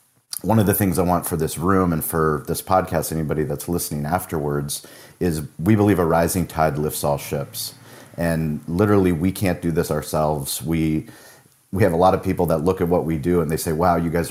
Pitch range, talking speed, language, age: 80-90 Hz, 220 wpm, English, 30-49